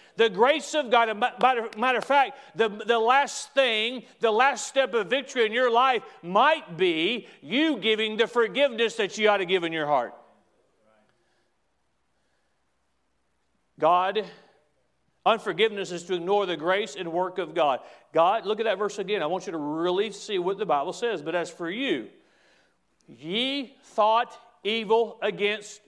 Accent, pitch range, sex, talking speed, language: American, 145-235 Hz, male, 160 wpm, English